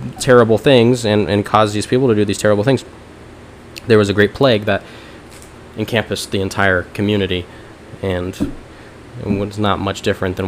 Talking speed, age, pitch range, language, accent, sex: 165 wpm, 20-39, 100-120 Hz, English, American, male